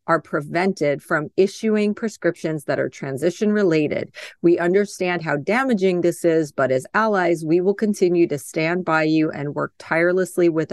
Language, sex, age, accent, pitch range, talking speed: English, female, 30-49, American, 155-200 Hz, 160 wpm